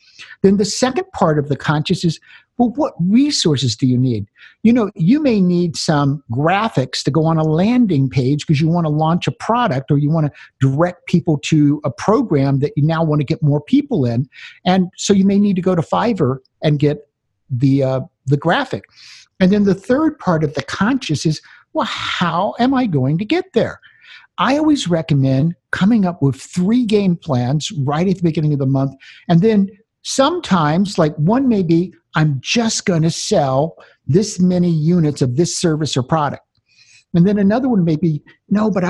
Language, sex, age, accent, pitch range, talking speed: English, male, 50-69, American, 150-205 Hz, 195 wpm